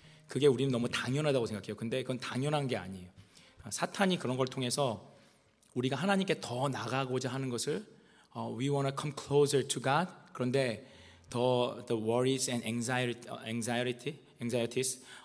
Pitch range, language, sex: 110-130 Hz, Korean, male